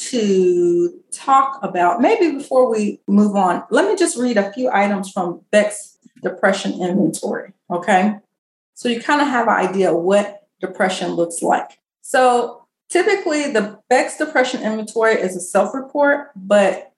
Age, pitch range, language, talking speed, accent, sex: 30-49, 190-260 Hz, English, 150 wpm, American, female